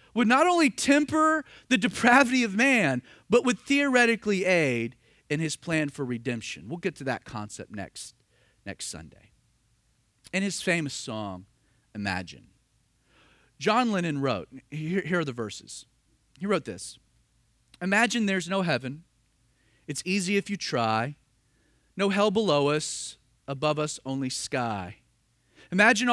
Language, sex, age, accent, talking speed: English, male, 40-59, American, 135 wpm